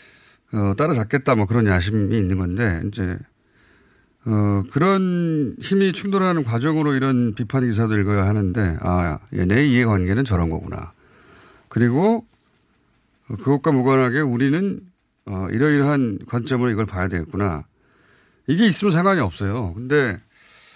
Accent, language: native, Korean